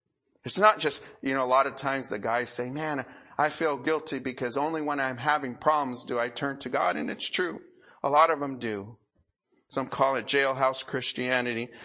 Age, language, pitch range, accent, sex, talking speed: 40-59, English, 120-145 Hz, American, male, 205 wpm